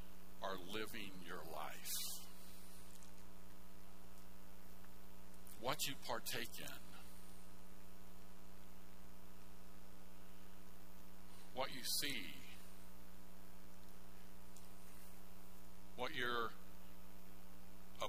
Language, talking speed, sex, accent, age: English, 45 wpm, male, American, 60-79